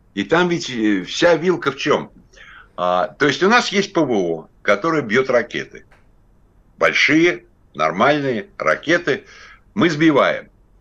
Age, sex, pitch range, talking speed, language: 60-79, male, 105-170 Hz, 120 wpm, Russian